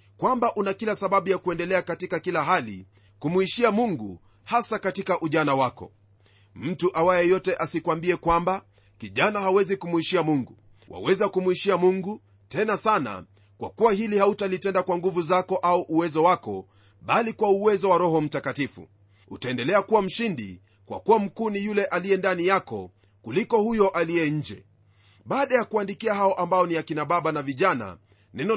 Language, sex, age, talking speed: Swahili, male, 30-49, 150 wpm